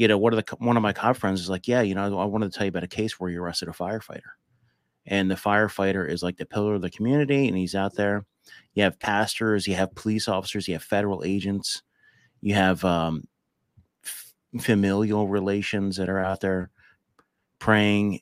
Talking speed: 200 wpm